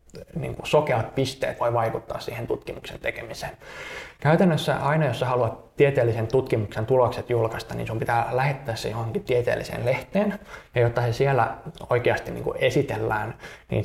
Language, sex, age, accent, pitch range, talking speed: Finnish, male, 20-39, native, 115-135 Hz, 140 wpm